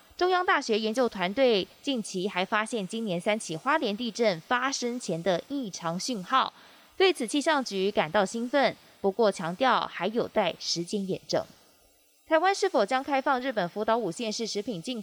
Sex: female